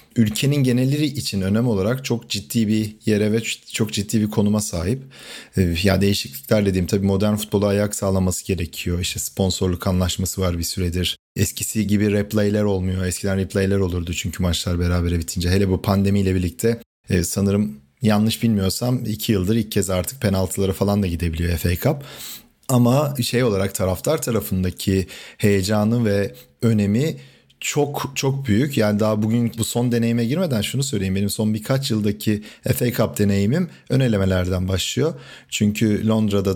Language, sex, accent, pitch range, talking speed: Turkish, male, native, 95-120 Hz, 150 wpm